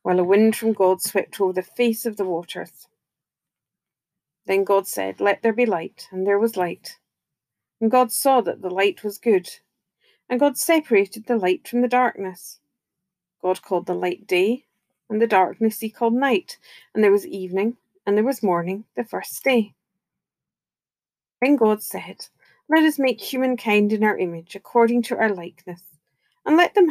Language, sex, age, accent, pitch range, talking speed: English, female, 40-59, British, 190-240 Hz, 175 wpm